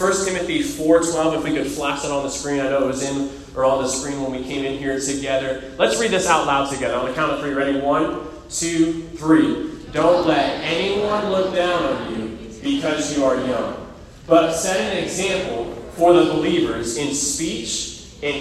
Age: 30-49